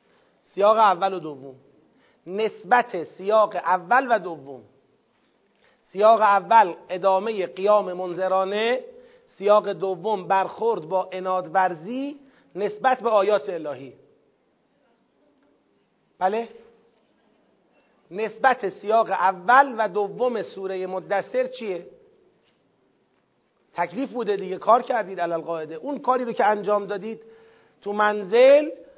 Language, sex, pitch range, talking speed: Persian, male, 185-230 Hz, 95 wpm